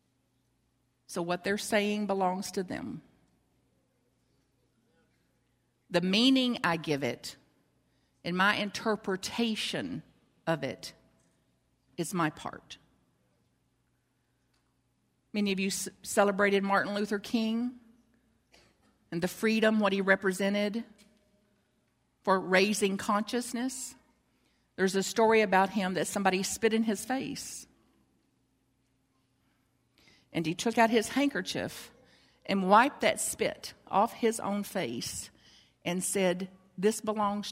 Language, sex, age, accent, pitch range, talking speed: English, female, 50-69, American, 190-255 Hz, 105 wpm